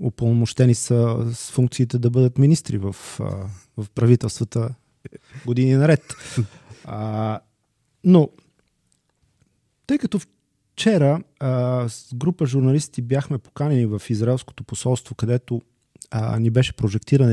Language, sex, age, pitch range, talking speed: Bulgarian, male, 30-49, 110-135 Hz, 95 wpm